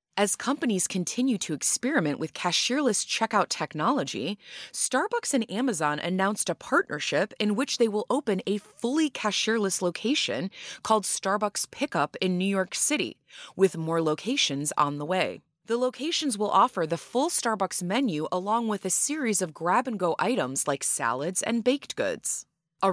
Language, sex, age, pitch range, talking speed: English, female, 20-39, 170-235 Hz, 150 wpm